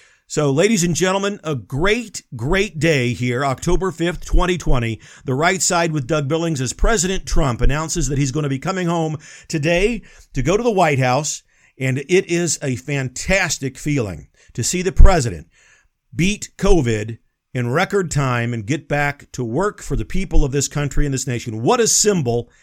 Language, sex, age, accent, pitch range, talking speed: English, male, 50-69, American, 130-175 Hz, 180 wpm